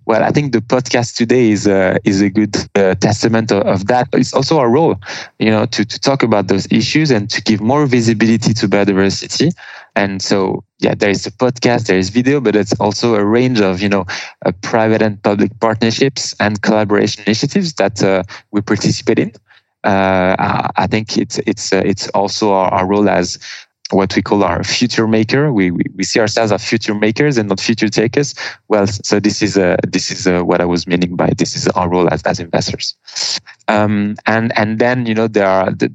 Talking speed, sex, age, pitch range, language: 205 wpm, male, 20-39, 100-115 Hz, Dutch